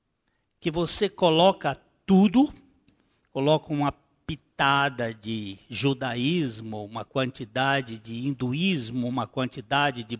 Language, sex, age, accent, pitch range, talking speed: Portuguese, male, 60-79, Brazilian, 135-195 Hz, 95 wpm